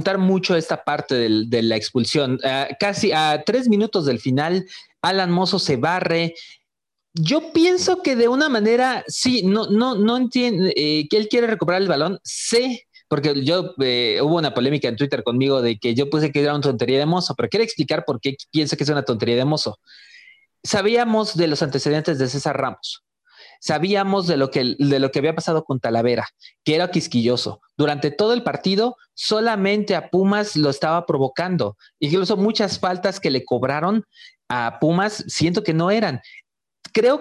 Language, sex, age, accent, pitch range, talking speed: Spanish, male, 30-49, Mexican, 145-210 Hz, 180 wpm